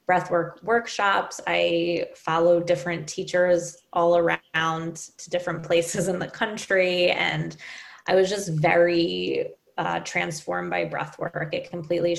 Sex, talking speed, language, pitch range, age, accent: female, 125 wpm, English, 165-185 Hz, 20-39, American